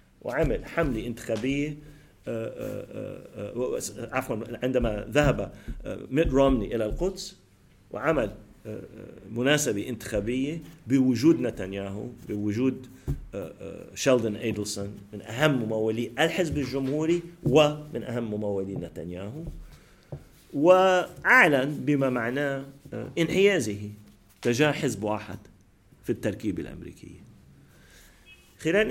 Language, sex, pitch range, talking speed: English, male, 105-140 Hz, 75 wpm